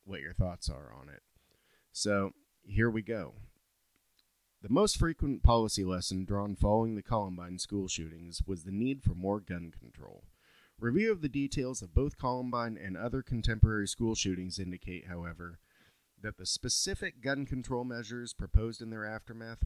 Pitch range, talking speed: 90-115 Hz, 160 wpm